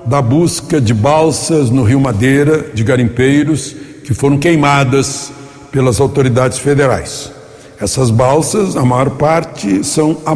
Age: 60-79